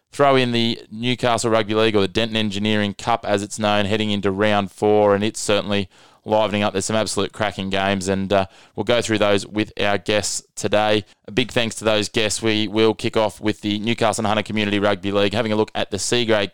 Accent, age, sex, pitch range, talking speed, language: Australian, 20-39, male, 100-110 Hz, 230 wpm, English